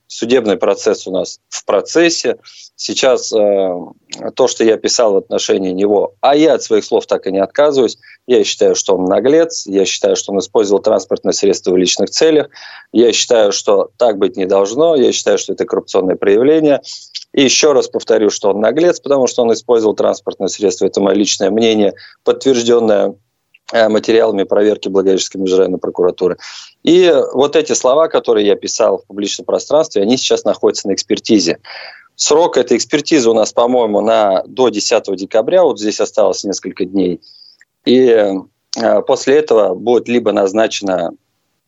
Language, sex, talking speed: Russian, male, 165 wpm